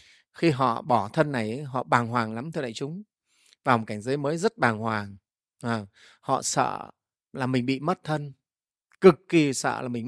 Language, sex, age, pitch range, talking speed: Vietnamese, male, 30-49, 140-205 Hz, 190 wpm